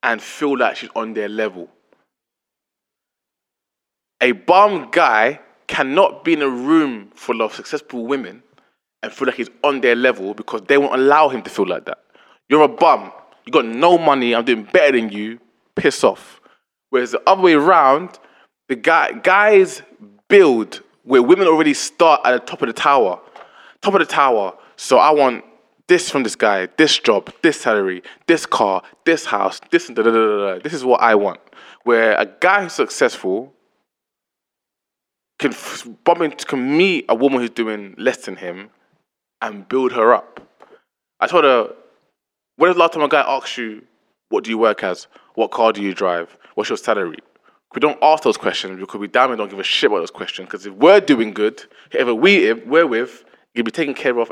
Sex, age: male, 20-39